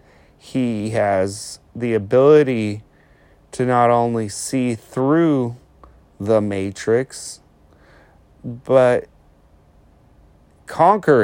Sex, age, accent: male, 30-49, American